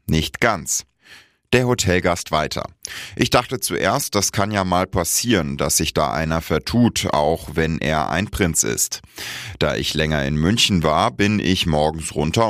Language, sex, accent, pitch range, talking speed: German, male, German, 80-100 Hz, 165 wpm